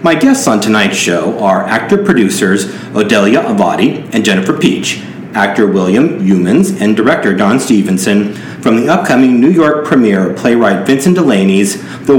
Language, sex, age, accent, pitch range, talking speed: English, male, 40-59, American, 100-155 Hz, 145 wpm